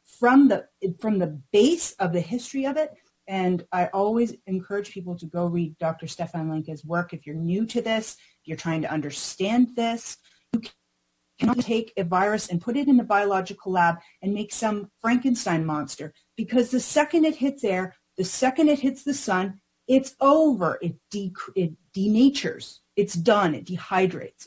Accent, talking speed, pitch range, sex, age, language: American, 175 wpm, 160-220 Hz, female, 30-49, English